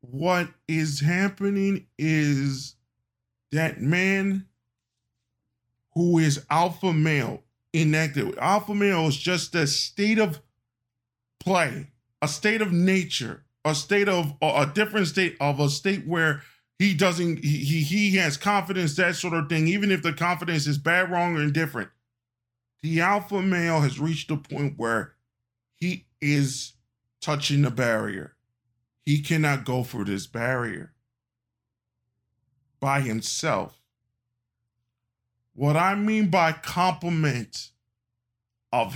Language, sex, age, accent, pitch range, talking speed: English, male, 20-39, American, 120-170 Hz, 125 wpm